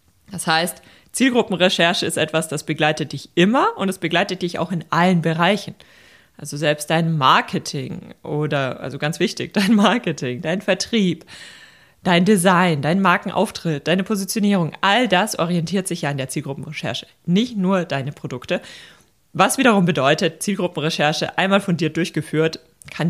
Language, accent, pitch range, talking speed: German, German, 150-190 Hz, 145 wpm